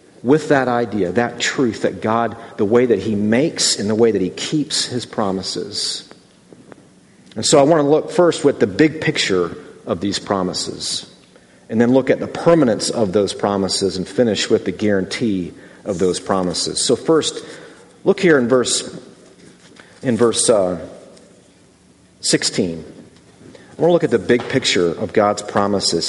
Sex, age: male, 50-69